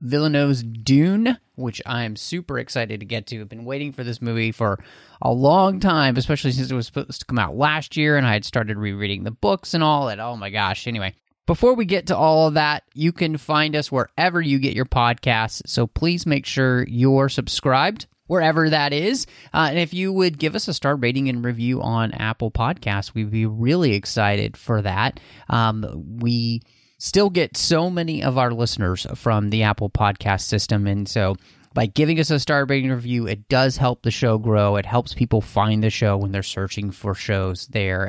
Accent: American